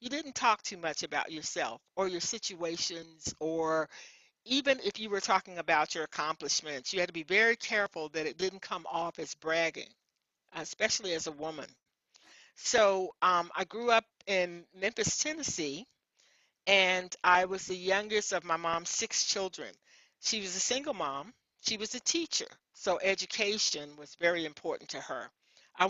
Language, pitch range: English, 165-195 Hz